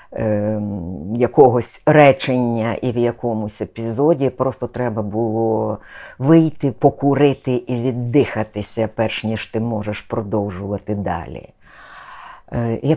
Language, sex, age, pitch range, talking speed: Ukrainian, female, 50-69, 105-145 Hz, 95 wpm